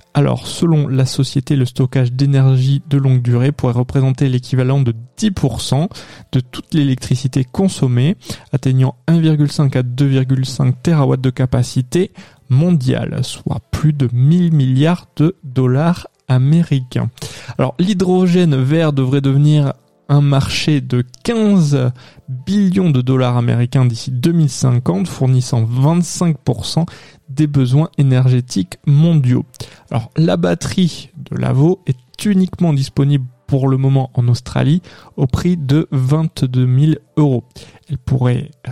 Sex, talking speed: male, 120 wpm